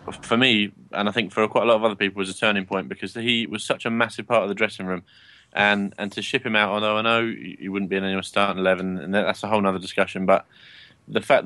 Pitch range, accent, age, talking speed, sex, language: 95-110 Hz, British, 20-39, 285 wpm, male, English